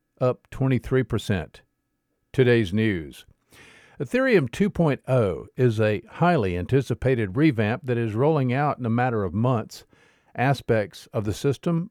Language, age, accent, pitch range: English, 50-69, American, 115-145 Hz